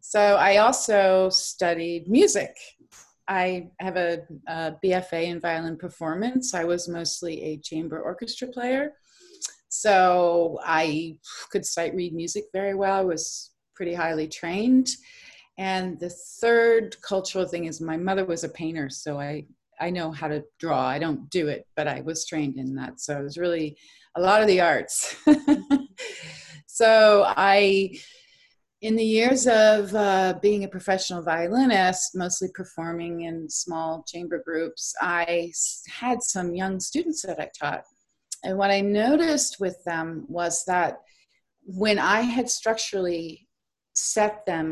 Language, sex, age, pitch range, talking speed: English, female, 30-49, 165-210 Hz, 145 wpm